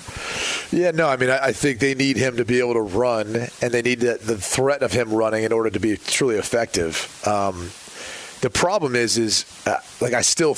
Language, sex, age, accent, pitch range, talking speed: English, male, 30-49, American, 115-140 Hz, 210 wpm